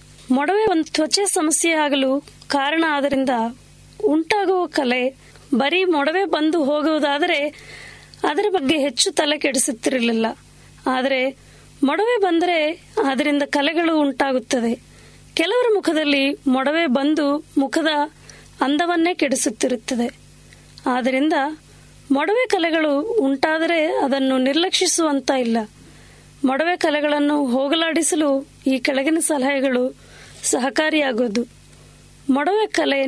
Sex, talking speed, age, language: female, 85 wpm, 20-39, Kannada